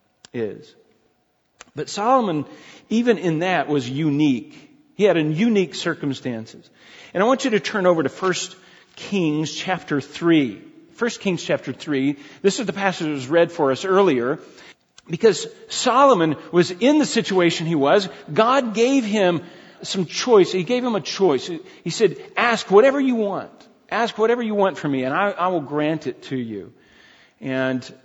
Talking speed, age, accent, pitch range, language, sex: 165 wpm, 40-59, American, 145-215 Hz, English, male